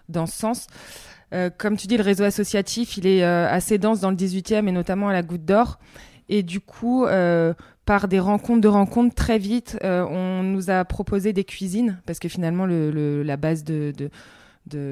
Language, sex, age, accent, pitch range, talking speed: French, female, 20-39, French, 160-195 Hz, 210 wpm